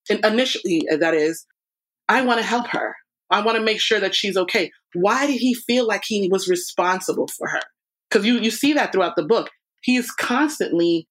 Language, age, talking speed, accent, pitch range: English, 30-49, 195 wpm, American, 175-220 Hz